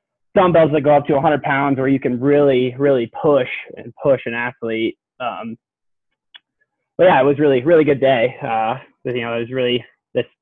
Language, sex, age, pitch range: English, male, 20-39, 120-140 Hz